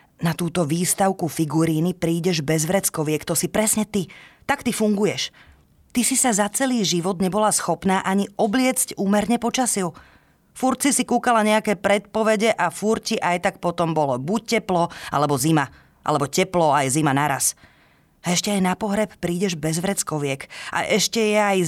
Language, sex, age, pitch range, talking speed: Slovak, female, 20-39, 155-200 Hz, 165 wpm